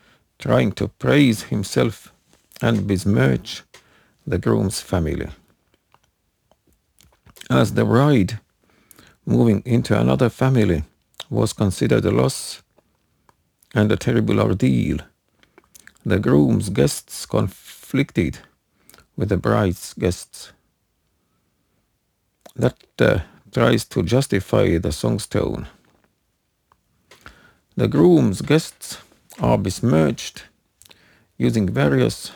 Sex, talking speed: male, 85 wpm